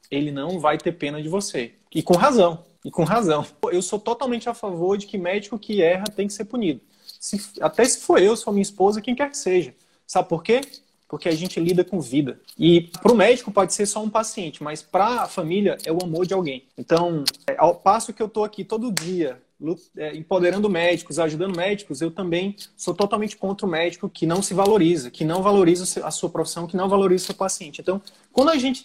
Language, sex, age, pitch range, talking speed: Portuguese, male, 20-39, 170-210 Hz, 225 wpm